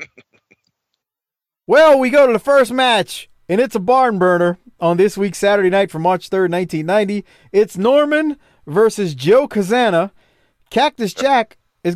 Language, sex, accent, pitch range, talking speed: English, male, American, 155-215 Hz, 145 wpm